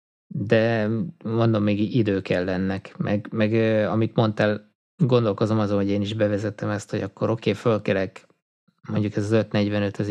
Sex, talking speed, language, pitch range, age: male, 160 wpm, Hungarian, 100-115 Hz, 20-39